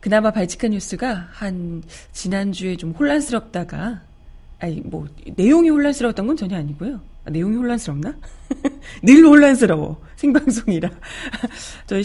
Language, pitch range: Korean, 180-250 Hz